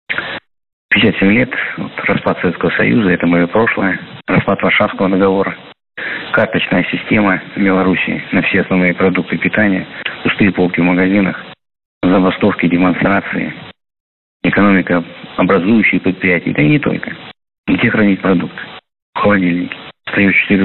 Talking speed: 115 wpm